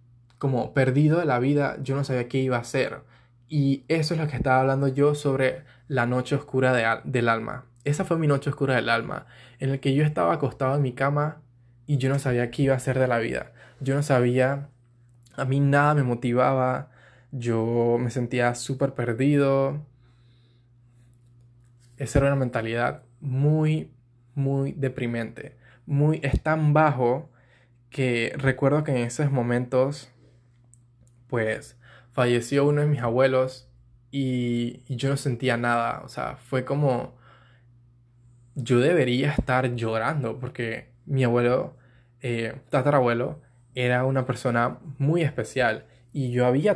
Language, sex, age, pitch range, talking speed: Spanish, male, 10-29, 120-135 Hz, 150 wpm